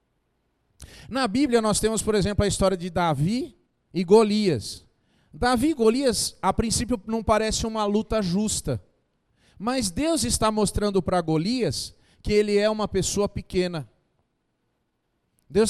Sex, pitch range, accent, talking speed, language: male, 150-225 Hz, Brazilian, 135 wpm, English